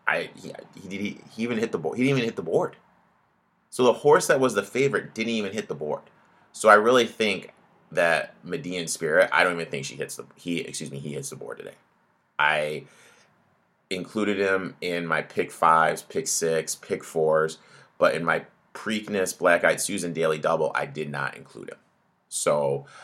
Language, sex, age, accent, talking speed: English, male, 30-49, American, 200 wpm